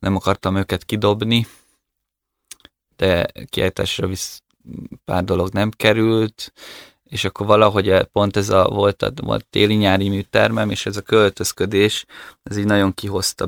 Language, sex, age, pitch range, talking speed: Hungarian, male, 20-39, 90-105 Hz, 125 wpm